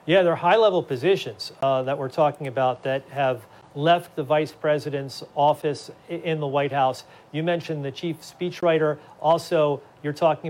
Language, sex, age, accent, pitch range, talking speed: English, male, 40-59, American, 145-170 Hz, 160 wpm